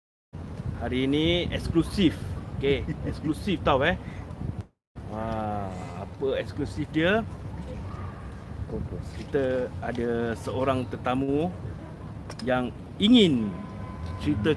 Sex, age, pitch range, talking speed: male, 30-49, 95-145 Hz, 75 wpm